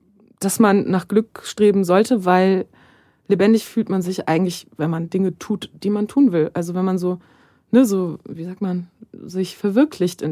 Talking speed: 185 wpm